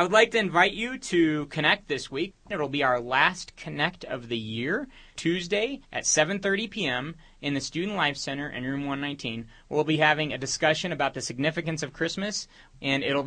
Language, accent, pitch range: English, American, 130-170 Hz